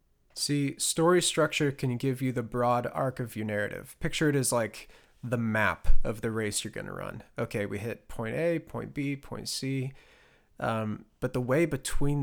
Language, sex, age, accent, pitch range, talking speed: English, male, 20-39, American, 105-130 Hz, 190 wpm